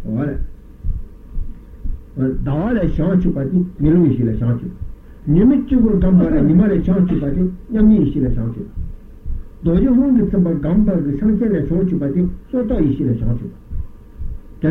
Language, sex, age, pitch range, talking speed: Italian, male, 60-79, 135-195 Hz, 135 wpm